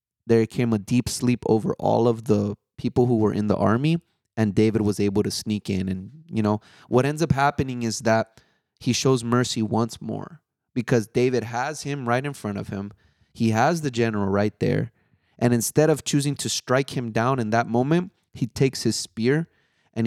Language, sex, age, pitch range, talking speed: English, male, 20-39, 110-140 Hz, 200 wpm